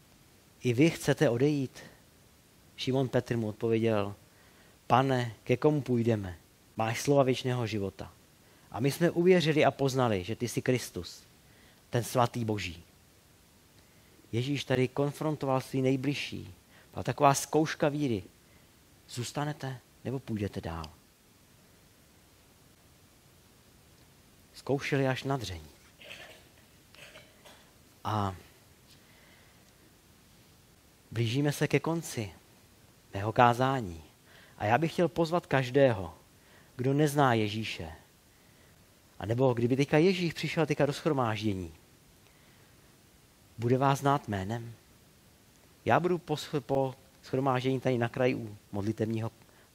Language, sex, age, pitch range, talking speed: Czech, male, 50-69, 110-140 Hz, 100 wpm